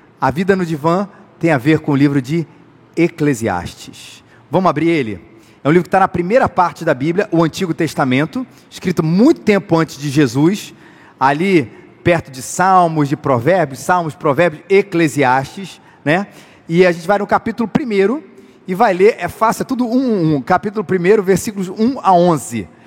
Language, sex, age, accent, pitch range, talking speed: Portuguese, male, 40-59, Brazilian, 145-190 Hz, 170 wpm